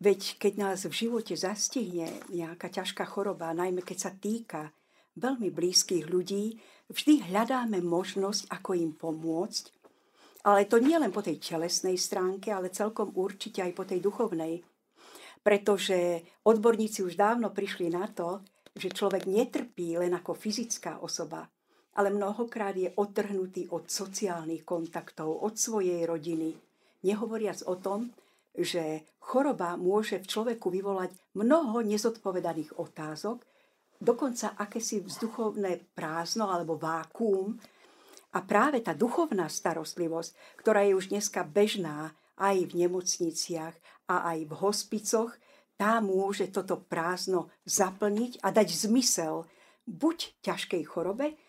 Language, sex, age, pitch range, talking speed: Slovak, female, 50-69, 175-215 Hz, 125 wpm